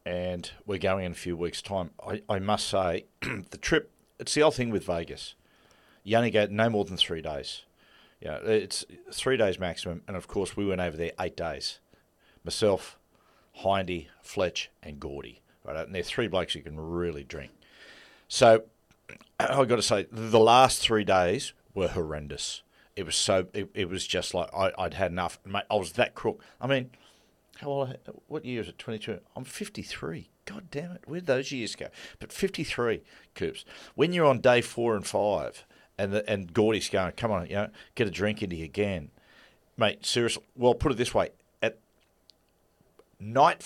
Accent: Australian